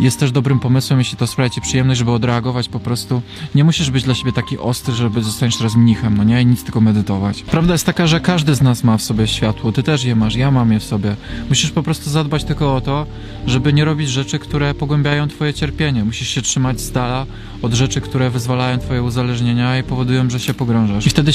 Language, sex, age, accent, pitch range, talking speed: Polish, male, 20-39, native, 115-135 Hz, 235 wpm